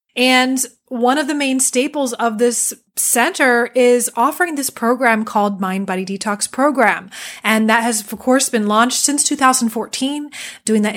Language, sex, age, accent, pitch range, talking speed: English, female, 20-39, American, 215-260 Hz, 160 wpm